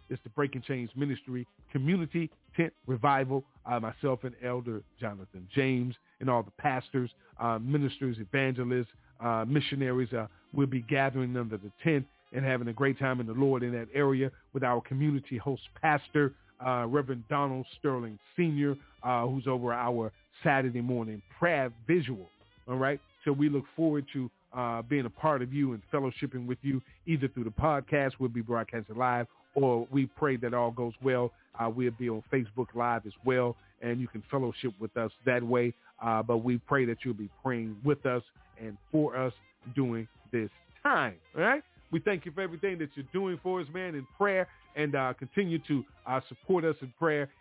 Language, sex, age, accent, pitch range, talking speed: English, male, 40-59, American, 120-140 Hz, 185 wpm